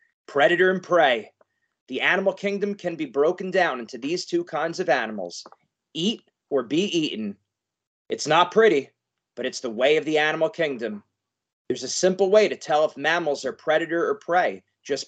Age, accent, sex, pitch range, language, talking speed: 30-49, American, male, 135-210 Hz, English, 175 wpm